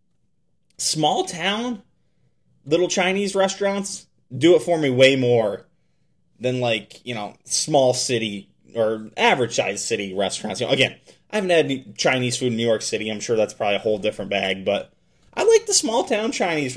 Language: English